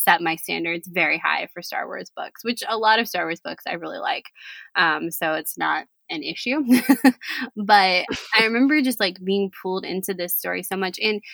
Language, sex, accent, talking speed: English, female, American, 200 wpm